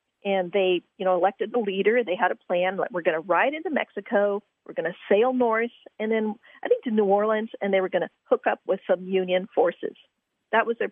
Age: 40-59